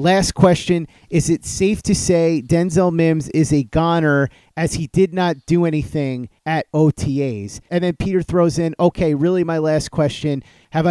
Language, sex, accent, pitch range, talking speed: English, male, American, 150-180 Hz, 170 wpm